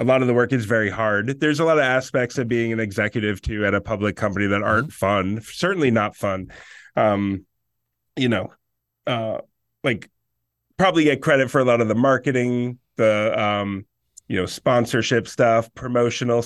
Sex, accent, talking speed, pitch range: male, American, 180 wpm, 105-125 Hz